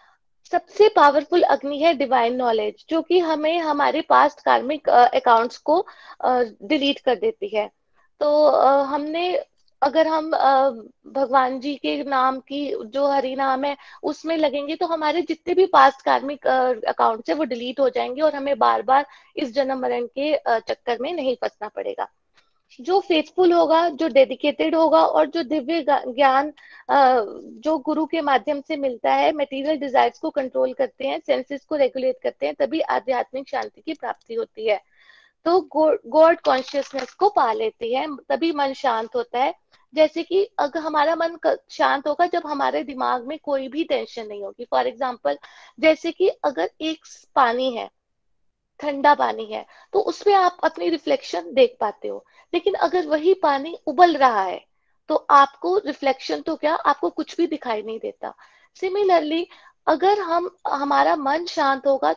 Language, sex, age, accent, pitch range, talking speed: Hindi, female, 20-39, native, 270-335 Hz, 165 wpm